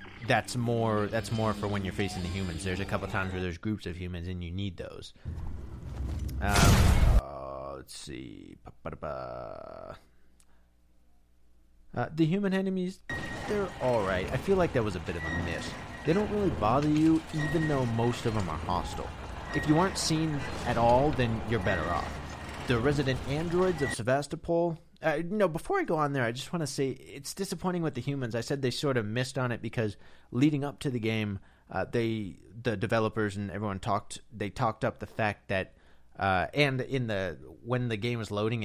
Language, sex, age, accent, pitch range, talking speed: English, male, 30-49, American, 95-140 Hz, 195 wpm